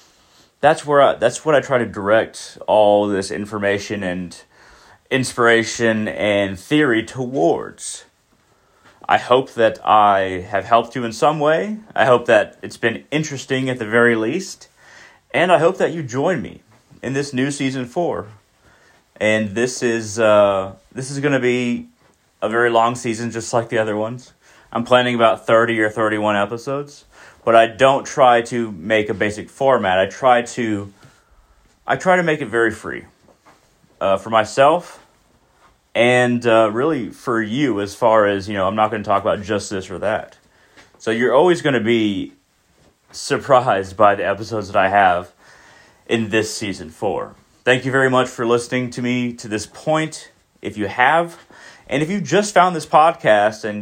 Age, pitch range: 30-49, 105-130 Hz